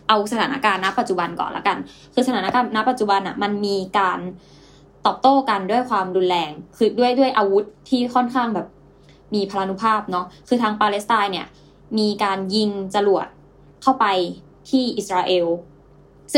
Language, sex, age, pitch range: Thai, female, 10-29, 190-230 Hz